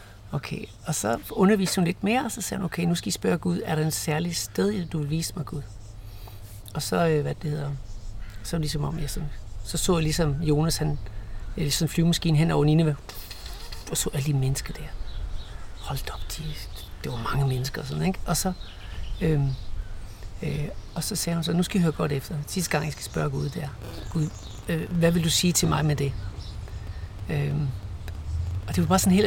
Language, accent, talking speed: Danish, native, 220 wpm